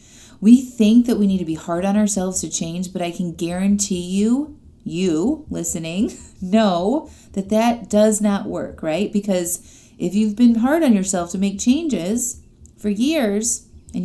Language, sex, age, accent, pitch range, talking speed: English, female, 30-49, American, 175-230 Hz, 165 wpm